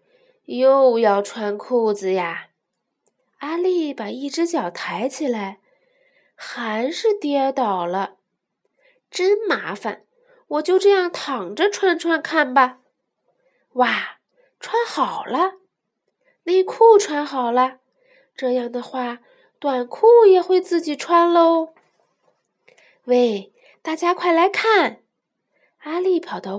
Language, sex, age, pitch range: Chinese, female, 20-39, 245-380 Hz